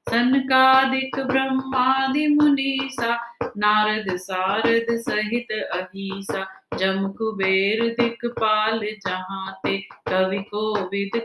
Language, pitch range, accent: Hindi, 195-255 Hz, native